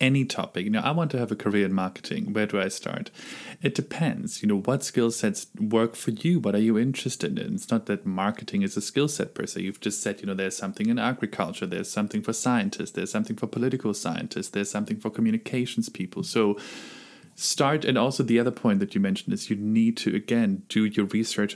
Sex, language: male, English